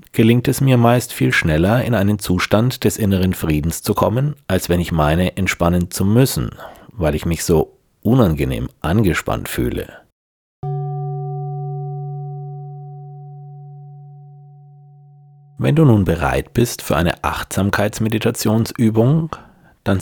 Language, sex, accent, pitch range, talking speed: German, male, German, 90-140 Hz, 110 wpm